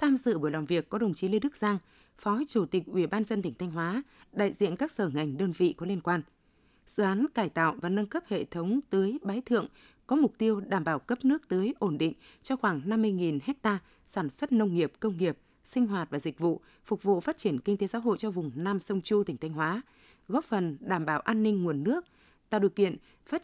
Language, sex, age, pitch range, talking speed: Vietnamese, female, 20-39, 180-225 Hz, 245 wpm